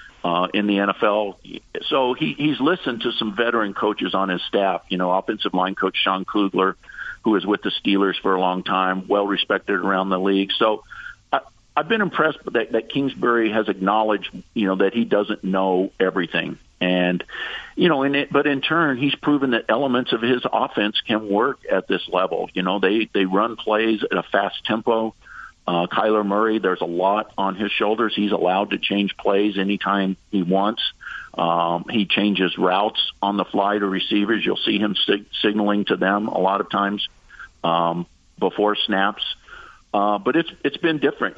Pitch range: 95-110 Hz